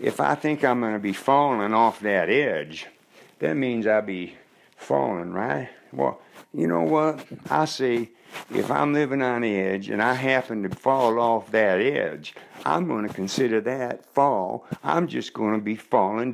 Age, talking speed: 60-79, 170 wpm